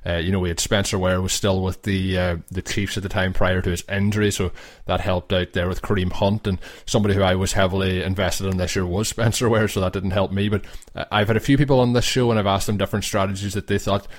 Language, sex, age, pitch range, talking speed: English, male, 20-39, 95-110 Hz, 275 wpm